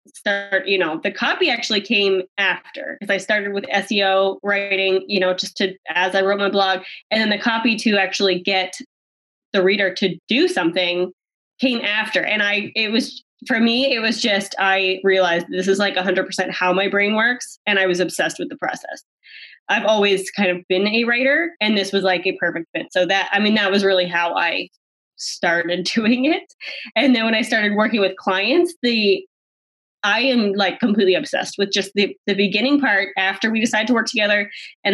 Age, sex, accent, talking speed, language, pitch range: 10-29, female, American, 200 wpm, English, 185-230 Hz